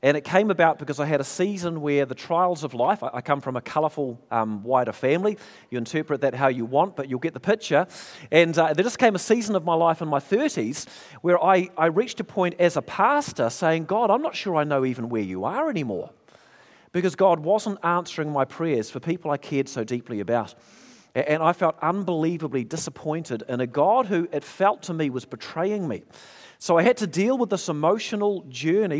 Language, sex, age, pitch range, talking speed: English, male, 40-59, 145-185 Hz, 215 wpm